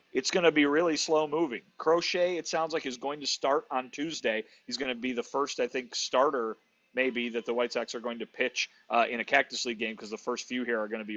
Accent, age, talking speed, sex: American, 40-59, 265 wpm, male